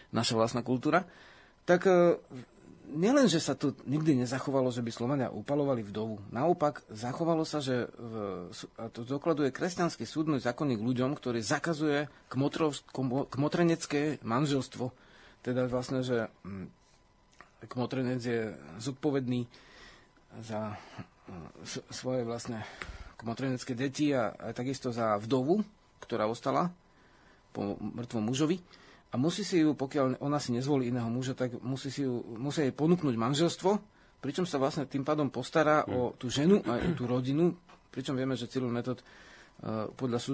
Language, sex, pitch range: Slovak, male, 115-145 Hz